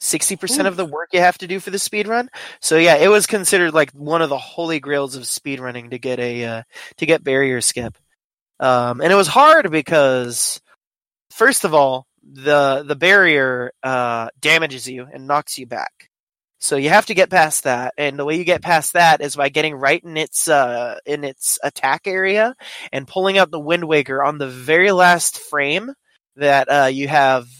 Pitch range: 135-175 Hz